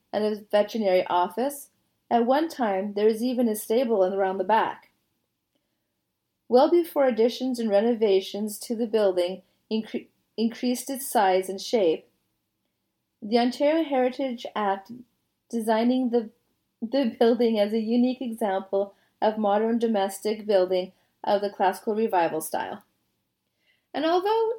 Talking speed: 120 wpm